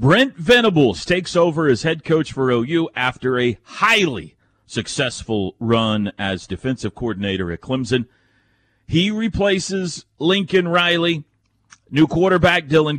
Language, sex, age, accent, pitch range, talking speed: English, male, 40-59, American, 120-170 Hz, 120 wpm